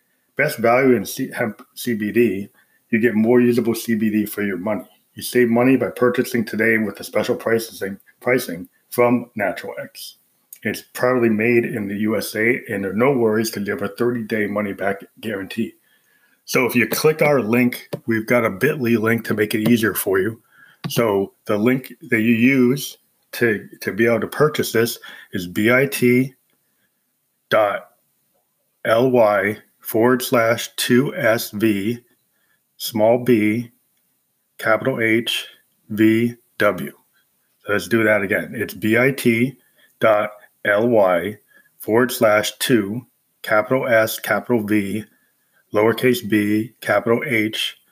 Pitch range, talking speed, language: 110-120 Hz, 130 wpm, English